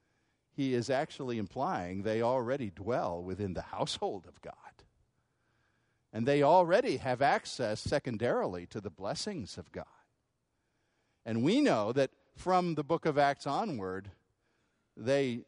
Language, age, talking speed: English, 50-69, 130 wpm